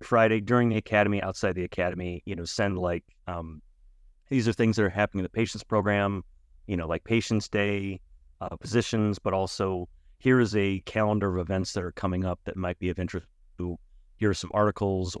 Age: 30-49